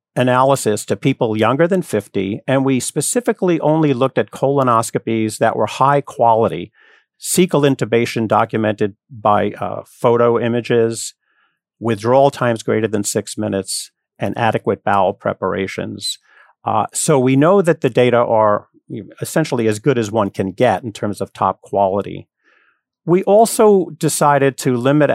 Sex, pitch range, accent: male, 110-140 Hz, American